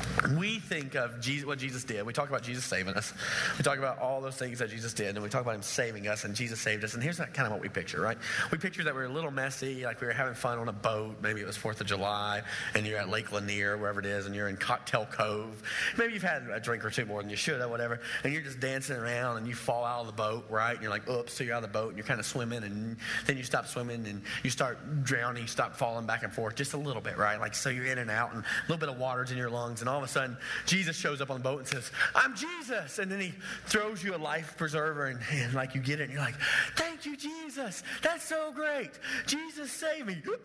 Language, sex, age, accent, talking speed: English, male, 30-49, American, 280 wpm